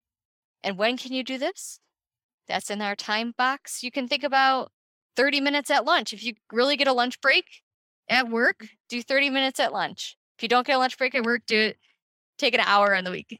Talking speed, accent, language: 225 wpm, American, English